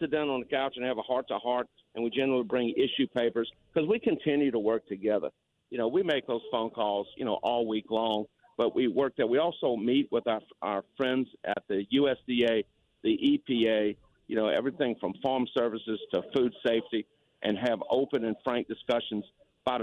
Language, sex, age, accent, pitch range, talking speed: English, male, 50-69, American, 110-130 Hz, 195 wpm